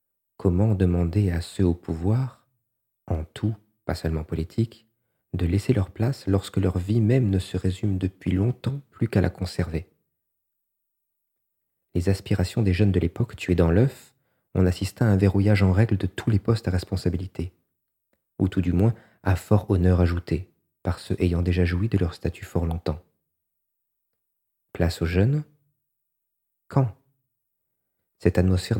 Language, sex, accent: French, male, French